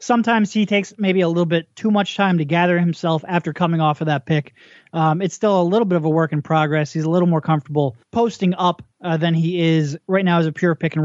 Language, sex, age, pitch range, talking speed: English, male, 30-49, 165-195 Hz, 260 wpm